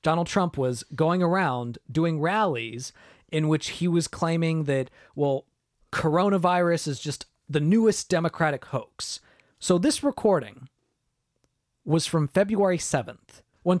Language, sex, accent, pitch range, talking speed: English, male, American, 130-180 Hz, 125 wpm